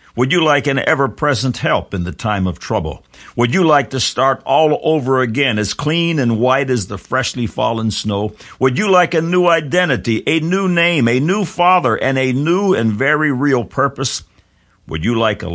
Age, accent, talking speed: 60-79, American, 195 wpm